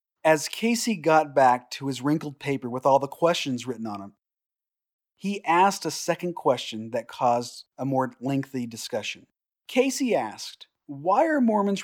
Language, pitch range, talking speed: English, 135-185 Hz, 155 wpm